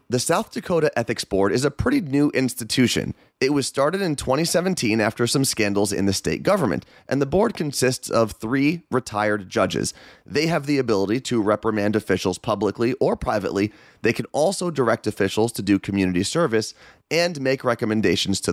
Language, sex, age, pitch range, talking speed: English, male, 30-49, 100-135 Hz, 170 wpm